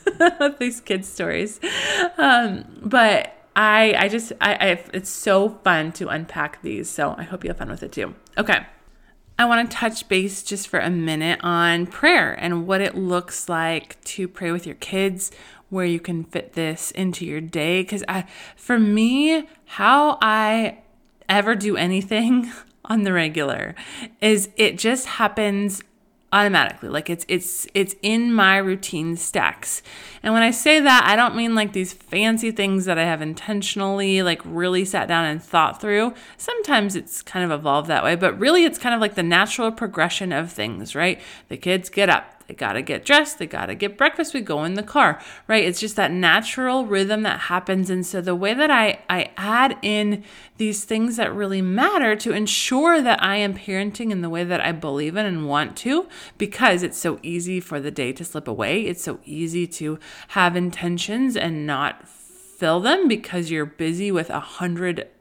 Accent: American